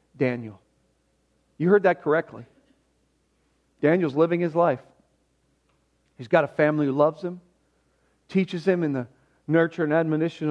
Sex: male